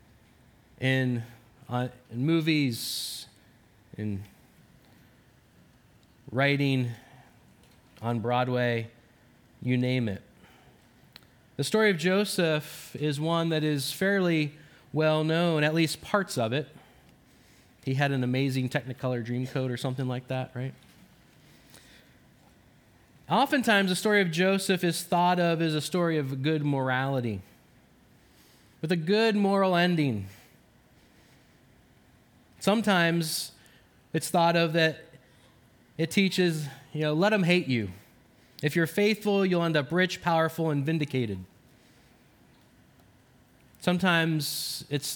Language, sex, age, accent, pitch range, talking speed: English, male, 20-39, American, 125-165 Hz, 110 wpm